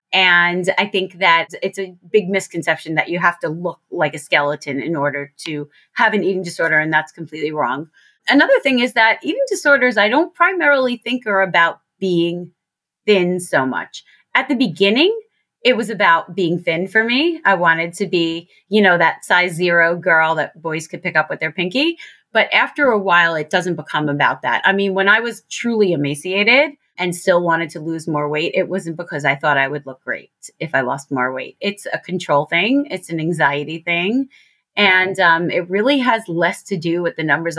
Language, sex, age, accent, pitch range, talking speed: English, female, 30-49, American, 160-210 Hz, 205 wpm